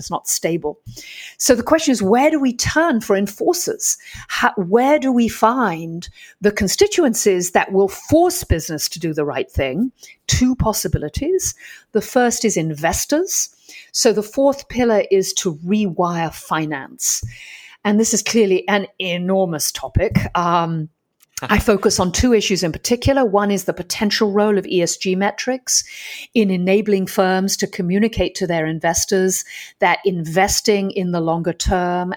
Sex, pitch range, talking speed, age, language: female, 170-220 Hz, 150 wpm, 50-69, English